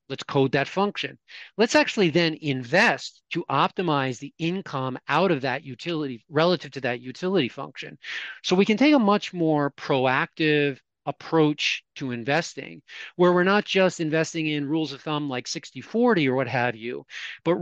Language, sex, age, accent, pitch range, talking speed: English, male, 40-59, American, 130-160 Hz, 165 wpm